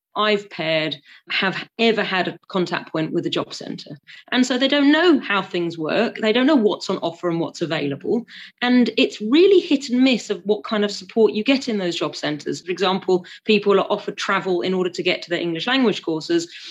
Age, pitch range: 30-49, 180-235 Hz